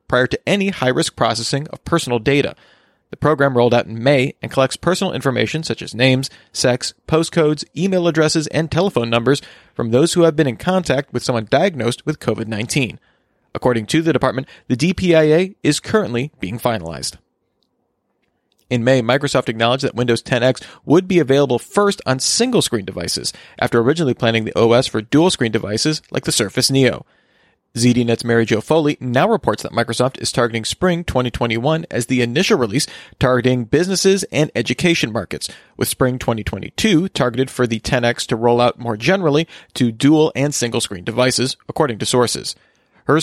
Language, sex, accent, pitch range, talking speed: English, male, American, 120-155 Hz, 165 wpm